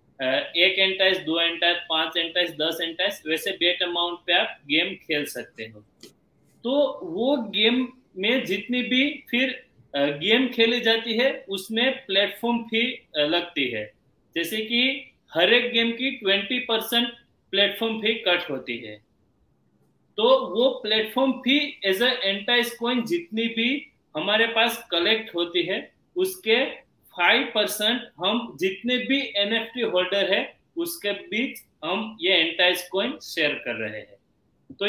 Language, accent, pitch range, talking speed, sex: Hindi, native, 180-235 Hz, 135 wpm, male